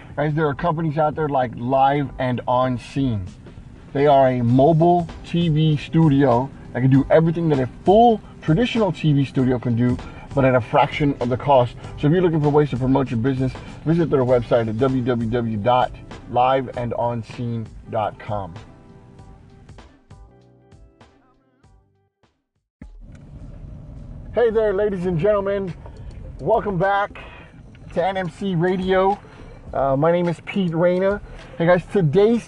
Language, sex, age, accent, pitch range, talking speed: English, male, 30-49, American, 125-175 Hz, 130 wpm